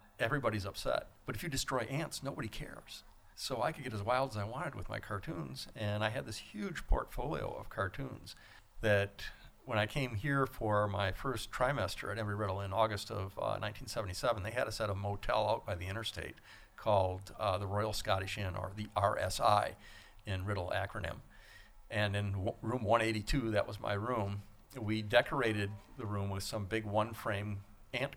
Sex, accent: male, American